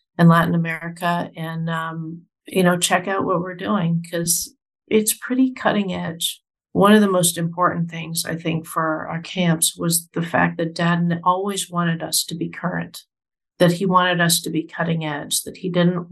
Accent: American